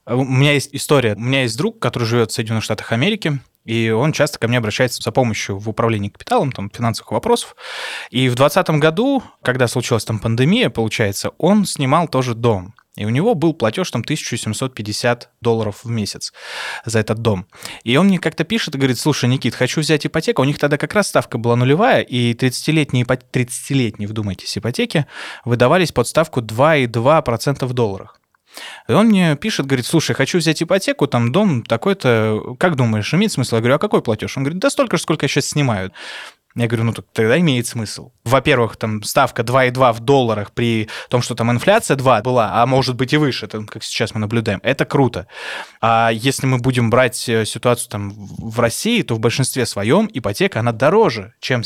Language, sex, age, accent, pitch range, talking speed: Russian, male, 20-39, native, 115-150 Hz, 190 wpm